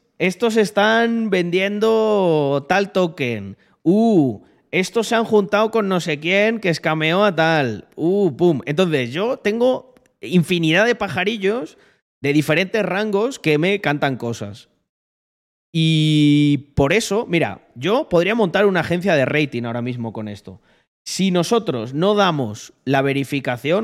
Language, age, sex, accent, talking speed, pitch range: Spanish, 30-49, male, Spanish, 135 wpm, 140-200 Hz